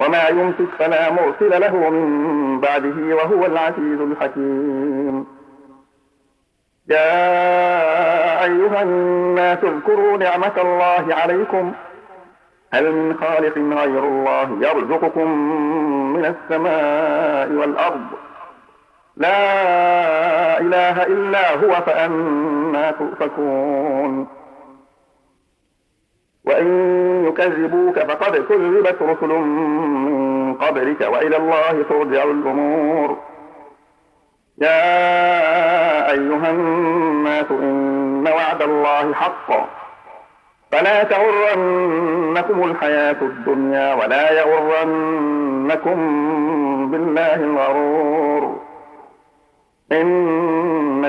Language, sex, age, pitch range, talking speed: Arabic, male, 50-69, 145-180 Hz, 70 wpm